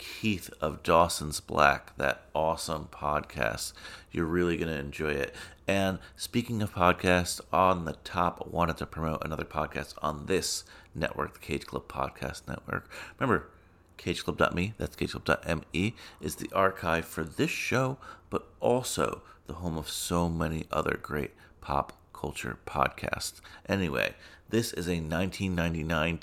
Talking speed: 135 wpm